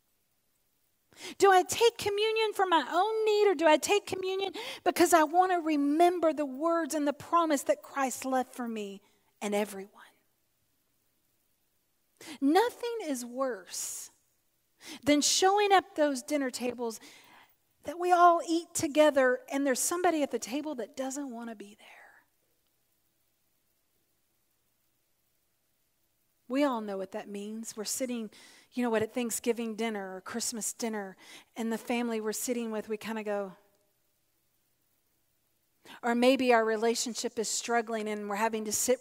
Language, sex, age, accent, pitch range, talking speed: English, female, 40-59, American, 225-320 Hz, 145 wpm